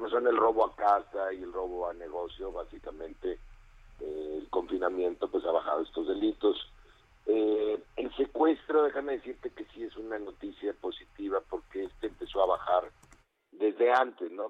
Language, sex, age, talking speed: Spanish, male, 50-69, 155 wpm